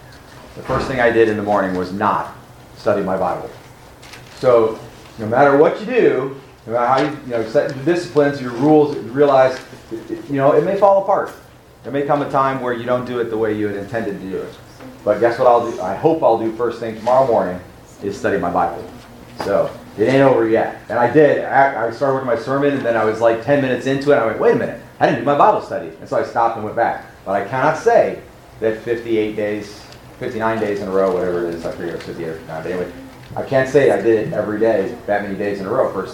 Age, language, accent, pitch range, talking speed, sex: 40-59, English, American, 110-135 Hz, 235 wpm, male